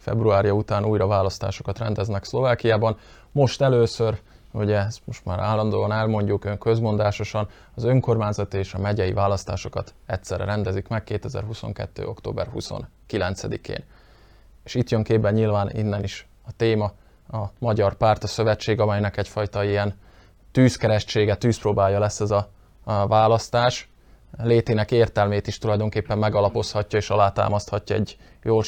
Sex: male